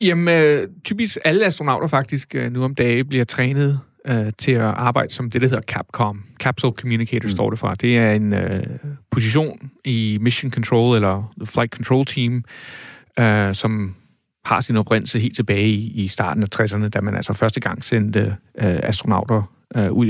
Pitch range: 110-130 Hz